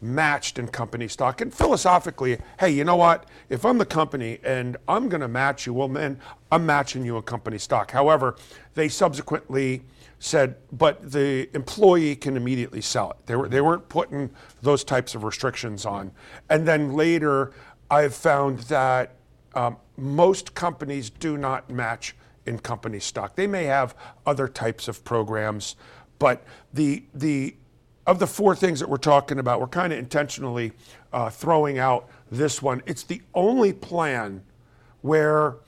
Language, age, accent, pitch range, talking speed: English, 50-69, American, 120-155 Hz, 160 wpm